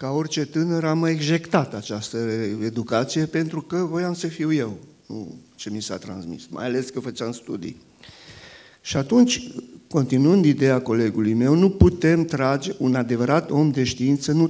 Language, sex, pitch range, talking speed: Romanian, male, 125-165 Hz, 155 wpm